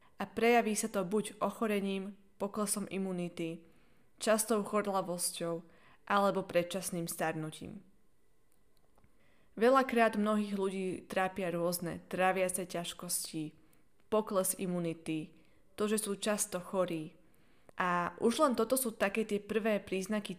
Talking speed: 110 wpm